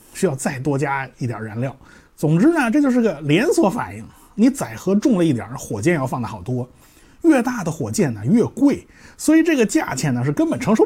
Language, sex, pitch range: Chinese, male, 130-200 Hz